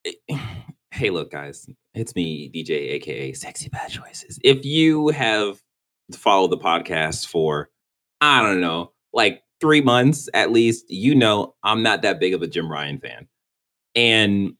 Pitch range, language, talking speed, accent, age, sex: 85-125 Hz, English, 150 wpm, American, 30-49, male